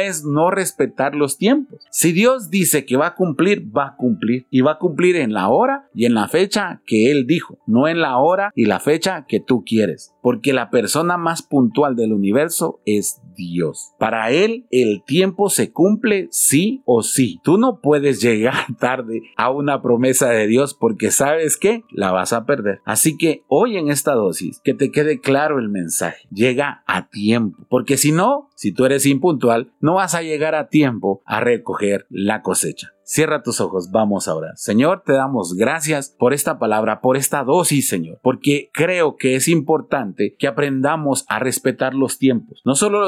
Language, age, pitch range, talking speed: Spanish, 50-69, 120-160 Hz, 190 wpm